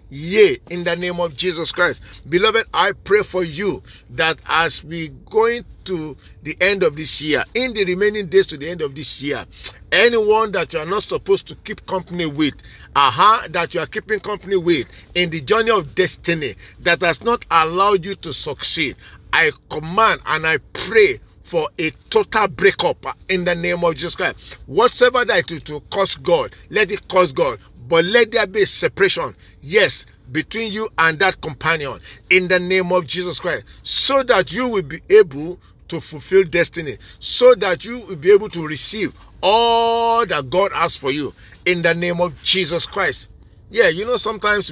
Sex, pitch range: male, 160-220 Hz